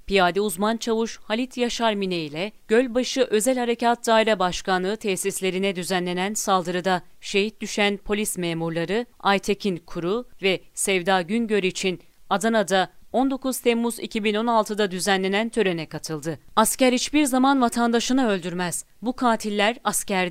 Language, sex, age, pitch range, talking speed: Turkish, female, 40-59, 190-230 Hz, 120 wpm